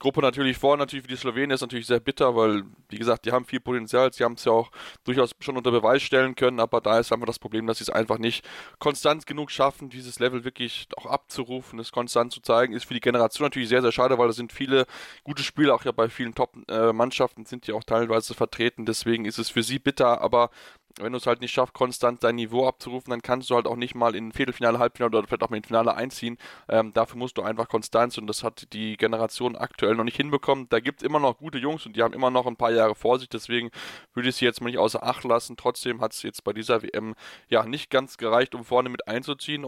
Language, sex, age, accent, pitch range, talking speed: German, male, 10-29, German, 115-130 Hz, 255 wpm